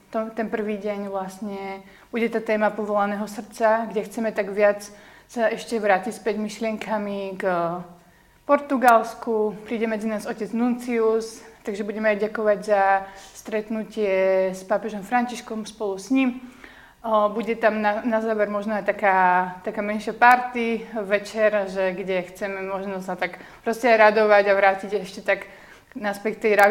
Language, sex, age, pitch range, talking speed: Slovak, female, 30-49, 205-230 Hz, 140 wpm